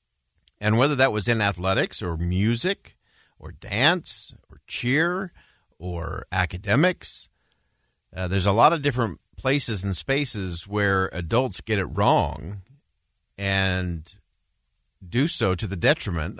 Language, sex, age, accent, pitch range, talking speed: English, male, 50-69, American, 90-115 Hz, 125 wpm